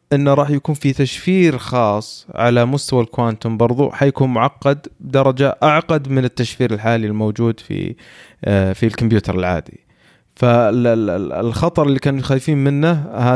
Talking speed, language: 120 wpm, Arabic